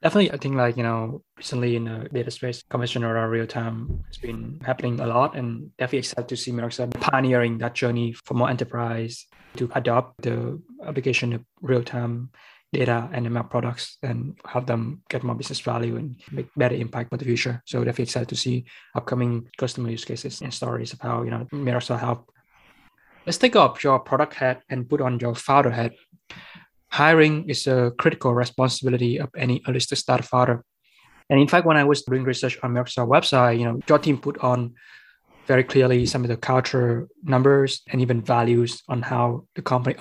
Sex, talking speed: male, 190 wpm